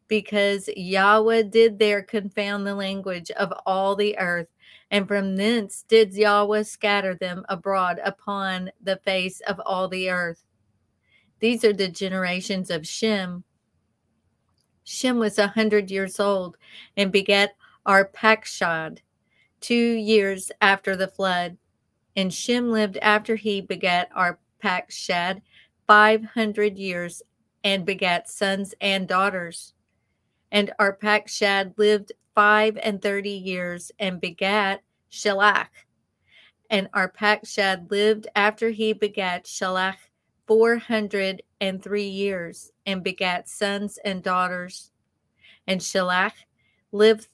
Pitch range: 185-210 Hz